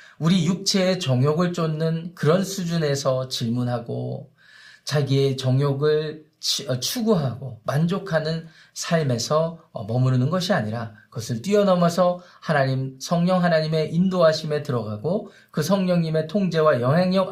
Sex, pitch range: male, 145-195 Hz